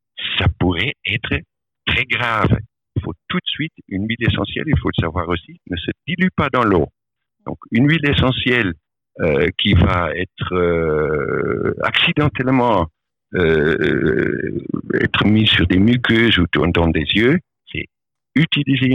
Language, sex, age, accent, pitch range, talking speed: French, male, 60-79, French, 85-120 Hz, 150 wpm